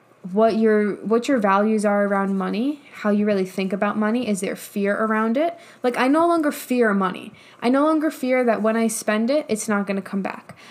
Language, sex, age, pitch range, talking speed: English, female, 10-29, 195-235 Hz, 220 wpm